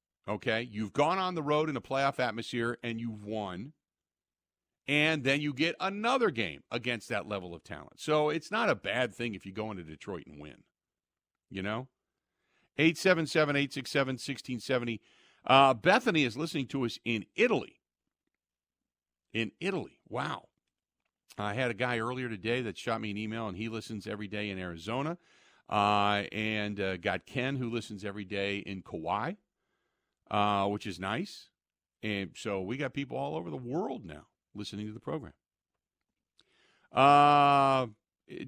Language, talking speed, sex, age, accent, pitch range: English, 160 wpm, male, 50-69, American, 100-135 Hz